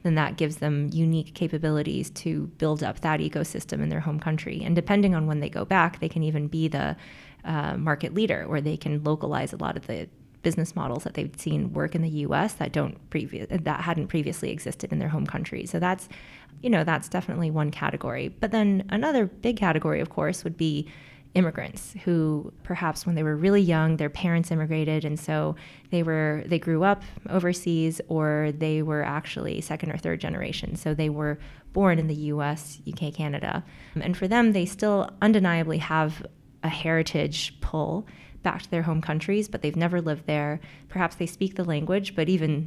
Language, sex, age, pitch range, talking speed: English, female, 20-39, 155-180 Hz, 195 wpm